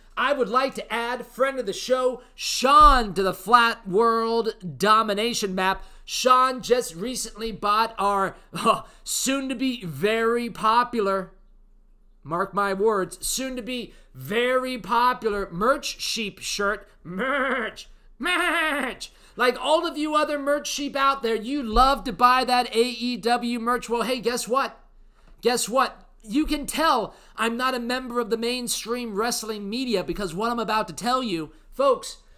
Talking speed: 135 wpm